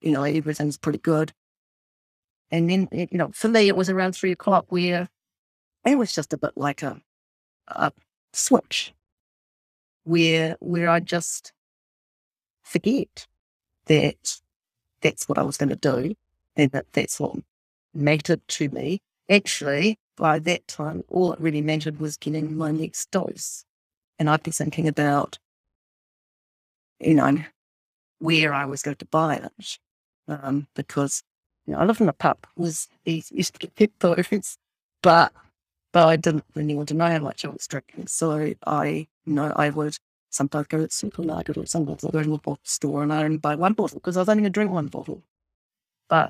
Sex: female